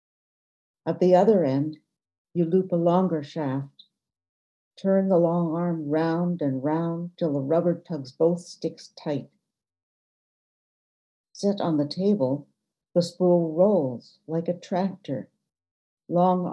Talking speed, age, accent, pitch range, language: 125 wpm, 60-79, American, 135-175 Hz, English